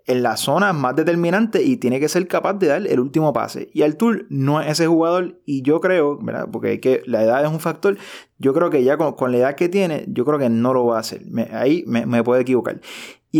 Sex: male